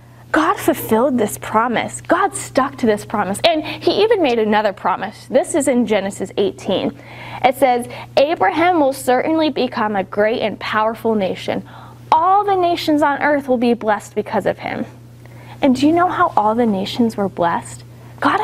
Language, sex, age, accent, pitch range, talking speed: English, female, 10-29, American, 200-310 Hz, 175 wpm